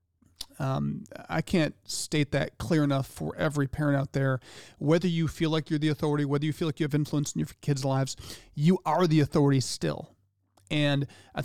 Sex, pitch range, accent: male, 135-165 Hz, American